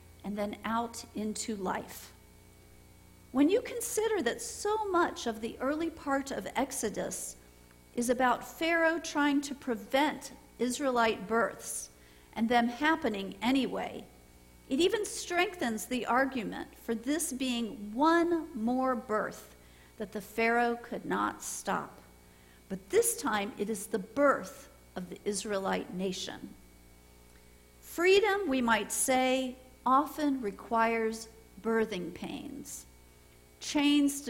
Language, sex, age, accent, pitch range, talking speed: English, female, 50-69, American, 190-275 Hz, 115 wpm